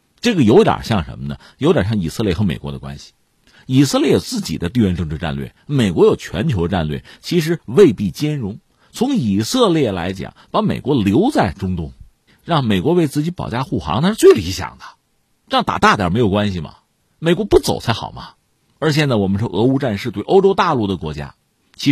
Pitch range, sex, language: 85-145 Hz, male, Chinese